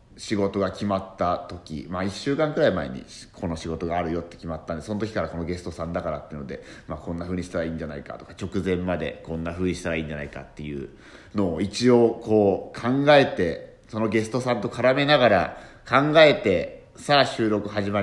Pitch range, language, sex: 90-140 Hz, Japanese, male